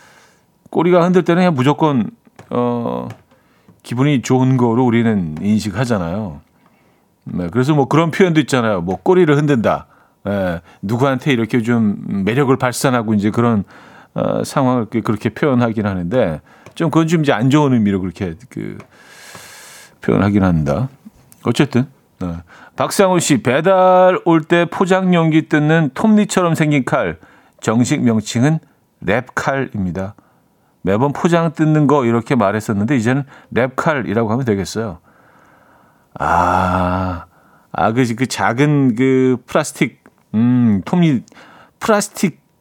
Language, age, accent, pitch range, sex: Korean, 40-59, native, 100-155 Hz, male